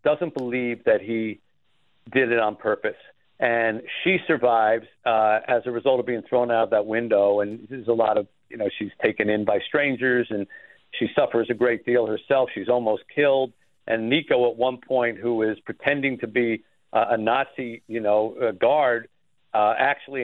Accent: American